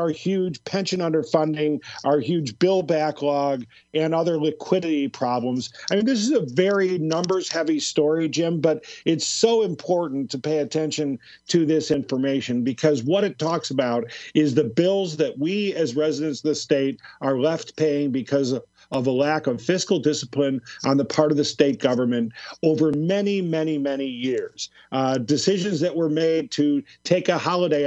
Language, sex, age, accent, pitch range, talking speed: English, male, 50-69, American, 145-185 Hz, 170 wpm